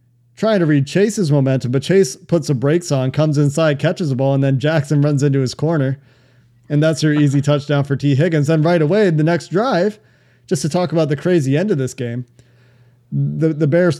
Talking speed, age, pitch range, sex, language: 215 wpm, 30-49, 130-160 Hz, male, English